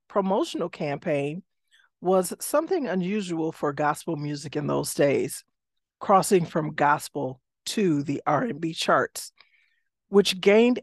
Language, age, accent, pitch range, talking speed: English, 50-69, American, 155-200 Hz, 110 wpm